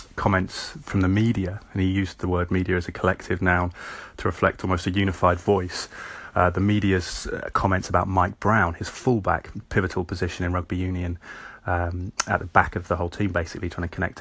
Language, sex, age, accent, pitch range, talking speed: English, male, 30-49, British, 90-95 Hz, 195 wpm